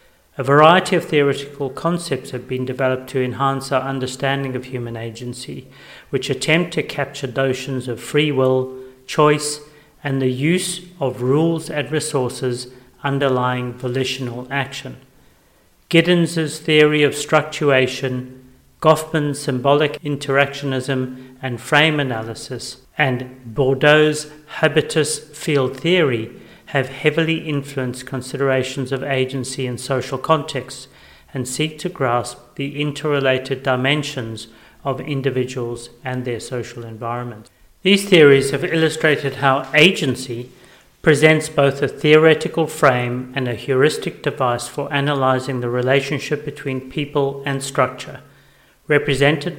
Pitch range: 130-150 Hz